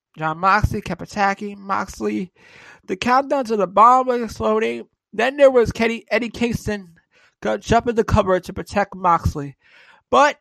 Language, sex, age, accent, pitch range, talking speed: English, male, 20-39, American, 170-225 Hz, 155 wpm